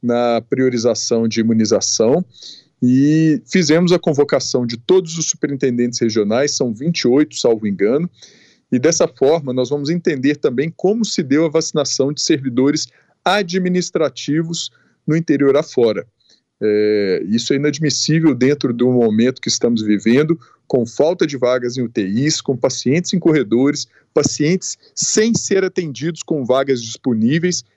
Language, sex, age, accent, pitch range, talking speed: Portuguese, male, 40-59, Brazilian, 120-165 Hz, 130 wpm